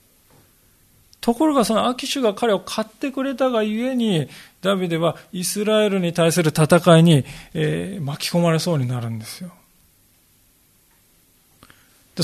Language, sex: Japanese, male